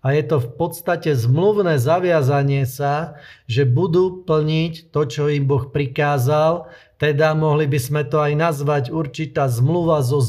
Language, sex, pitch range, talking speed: Slovak, male, 140-160 Hz, 155 wpm